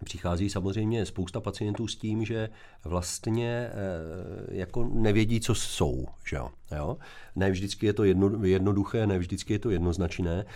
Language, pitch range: Czech, 90-110 Hz